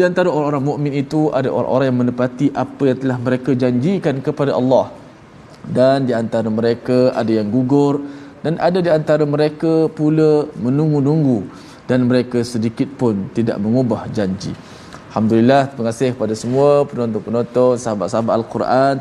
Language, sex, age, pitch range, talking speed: Malayalam, male, 20-39, 110-135 Hz, 140 wpm